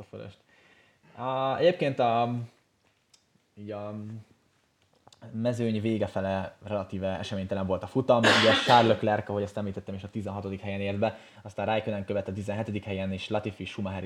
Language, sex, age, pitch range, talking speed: Hungarian, male, 20-39, 95-110 Hz, 145 wpm